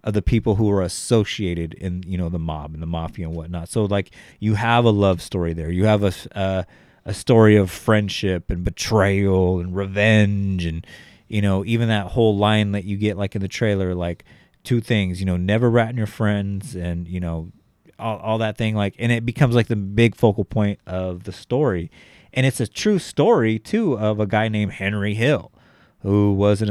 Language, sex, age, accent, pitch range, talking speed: English, male, 30-49, American, 95-120 Hz, 210 wpm